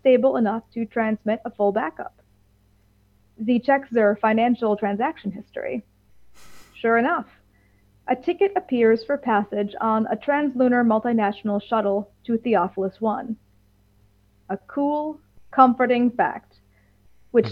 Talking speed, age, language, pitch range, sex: 110 wpm, 30-49, English, 195-250 Hz, female